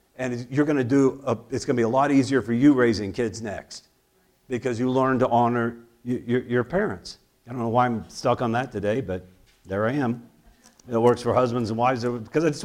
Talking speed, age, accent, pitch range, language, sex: 230 wpm, 50-69, American, 110-140 Hz, English, male